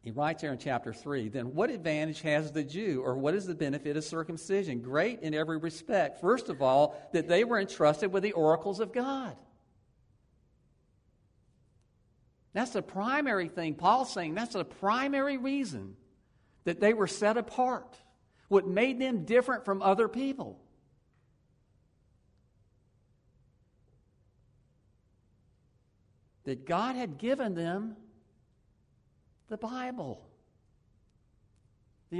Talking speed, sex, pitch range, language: 120 wpm, male, 110-170 Hz, English